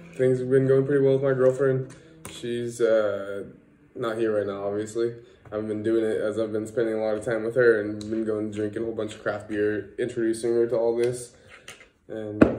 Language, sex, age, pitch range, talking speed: English, male, 20-39, 105-125 Hz, 220 wpm